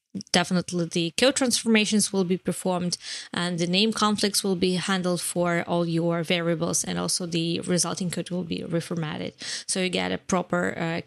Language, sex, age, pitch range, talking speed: English, female, 20-39, 170-185 Hz, 175 wpm